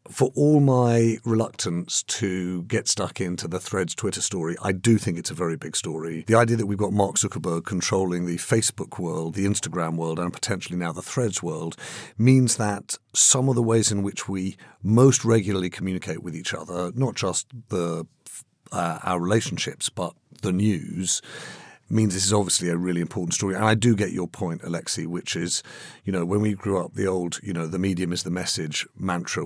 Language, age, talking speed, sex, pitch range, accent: English, 50-69, 200 wpm, male, 85-110 Hz, British